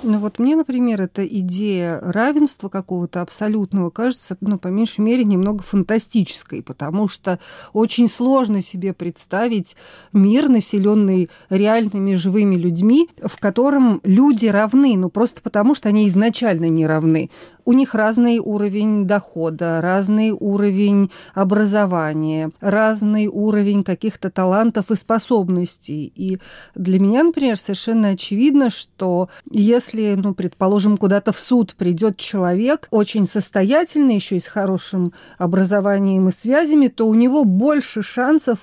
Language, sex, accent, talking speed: Russian, female, native, 130 wpm